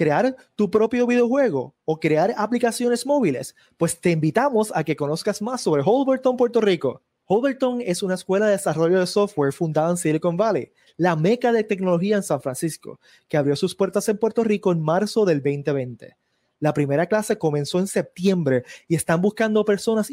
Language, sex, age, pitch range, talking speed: Spanish, male, 20-39, 155-205 Hz, 175 wpm